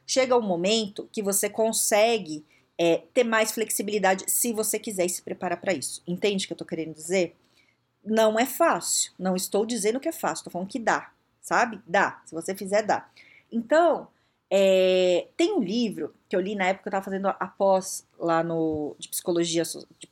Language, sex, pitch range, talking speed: Portuguese, female, 185-255 Hz, 185 wpm